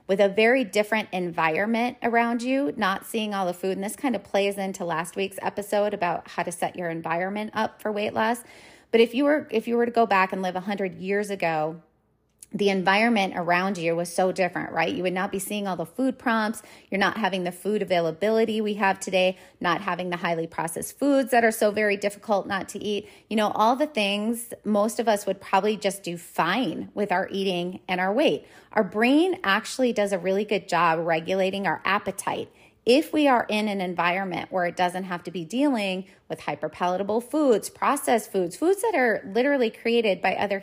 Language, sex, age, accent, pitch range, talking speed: English, female, 30-49, American, 180-225 Hz, 210 wpm